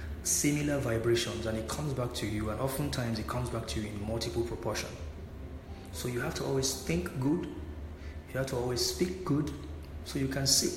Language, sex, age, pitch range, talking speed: English, male, 30-49, 80-125 Hz, 195 wpm